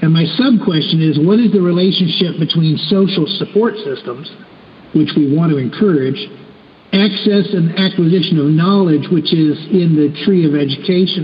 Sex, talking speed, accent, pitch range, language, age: male, 155 wpm, American, 155-205 Hz, English, 60-79